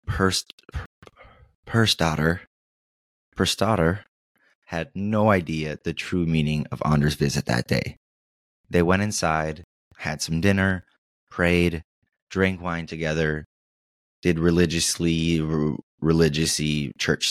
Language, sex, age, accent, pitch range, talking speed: English, male, 20-39, American, 75-90 Hz, 105 wpm